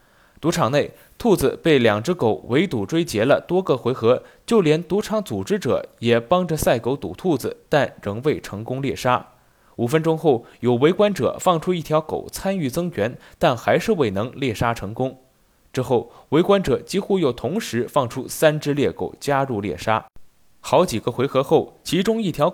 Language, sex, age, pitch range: Chinese, male, 20-39, 120-175 Hz